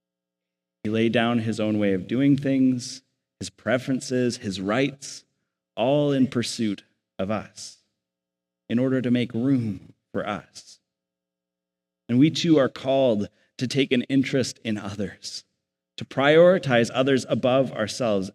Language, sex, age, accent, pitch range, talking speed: English, male, 30-49, American, 110-155 Hz, 135 wpm